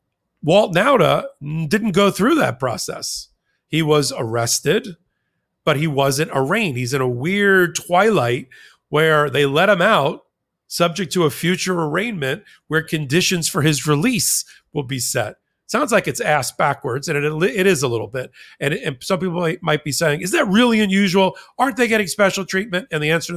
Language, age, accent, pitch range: English, 40-59, American, 135-180 Hz